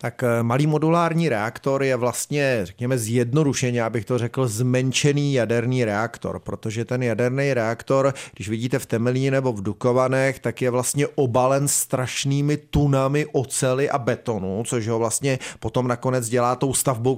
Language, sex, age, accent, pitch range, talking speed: Czech, male, 30-49, native, 115-140 Hz, 145 wpm